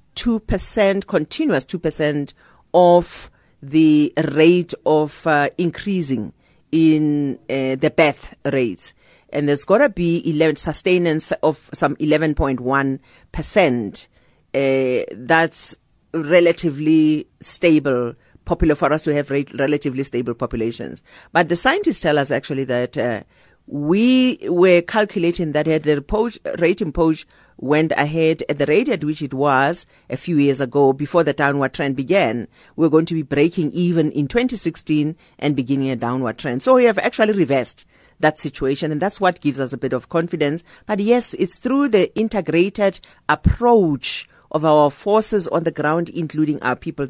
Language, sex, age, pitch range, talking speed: English, female, 40-59, 140-175 Hz, 150 wpm